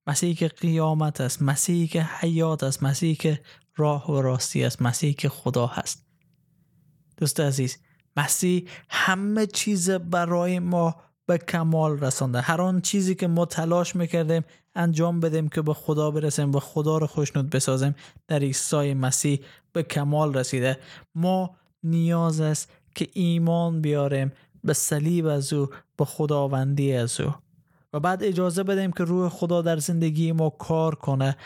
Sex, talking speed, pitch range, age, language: male, 150 wpm, 145-170 Hz, 20-39, Persian